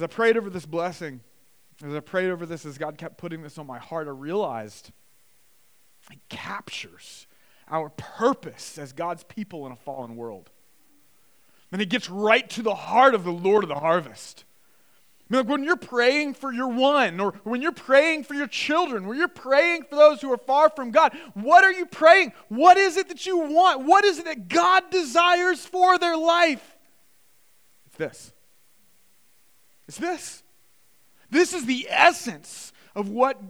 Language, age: English, 30-49